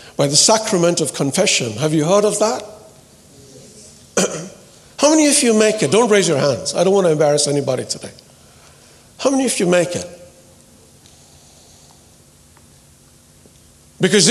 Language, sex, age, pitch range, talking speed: English, male, 60-79, 150-220 Hz, 145 wpm